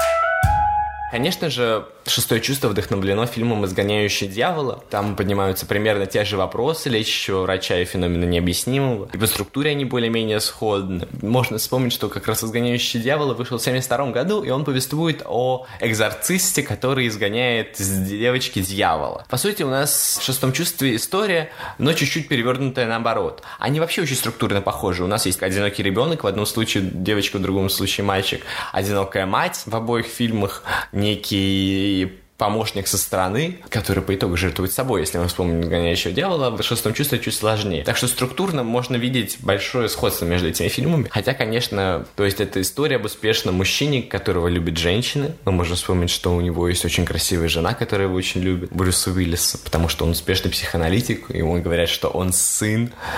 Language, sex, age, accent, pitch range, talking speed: Russian, male, 20-39, native, 95-125 Hz, 170 wpm